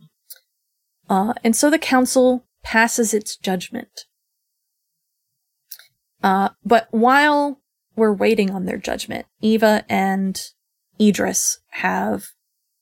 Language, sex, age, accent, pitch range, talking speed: English, female, 30-49, American, 190-230 Hz, 95 wpm